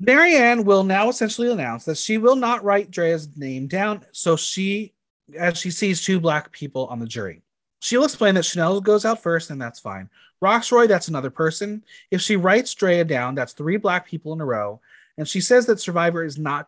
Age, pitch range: 30-49, 150-205 Hz